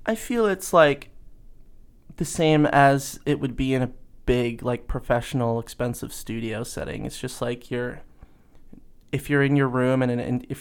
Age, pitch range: 20-39, 120-135 Hz